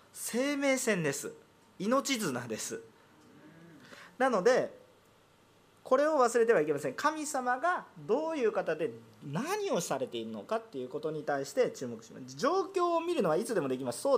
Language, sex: Japanese, male